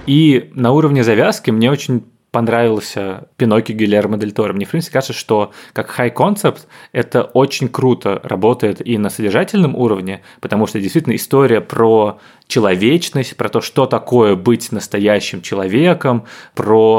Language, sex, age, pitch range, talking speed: Russian, male, 20-39, 105-130 Hz, 140 wpm